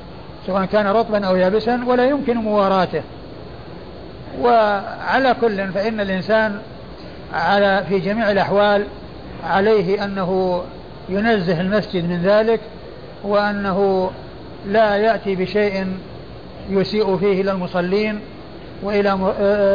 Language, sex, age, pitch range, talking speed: Arabic, male, 50-69, 190-215 Hz, 95 wpm